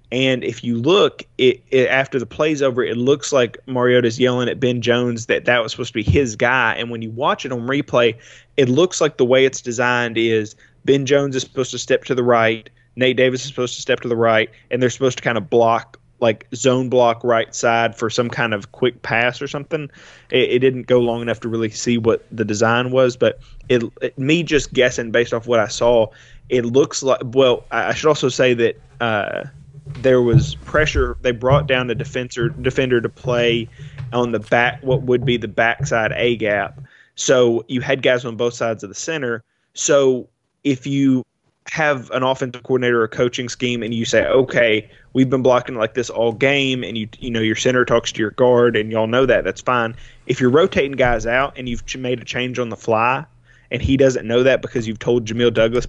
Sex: male